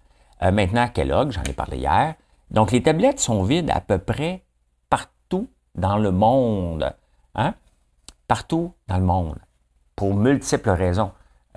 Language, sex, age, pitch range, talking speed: French, male, 60-79, 85-120 Hz, 145 wpm